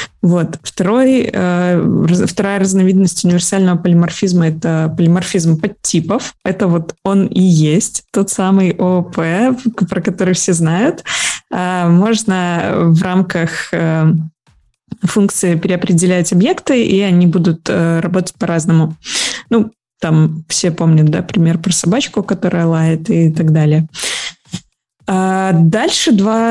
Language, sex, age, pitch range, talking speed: Russian, female, 20-39, 170-200 Hz, 110 wpm